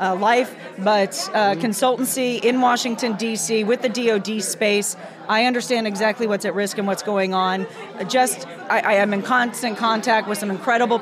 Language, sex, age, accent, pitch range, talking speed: English, female, 40-59, American, 205-245 Hz, 180 wpm